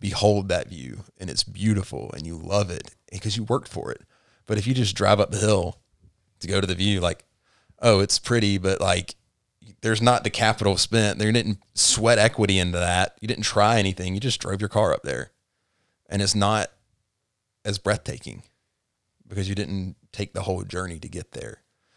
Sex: male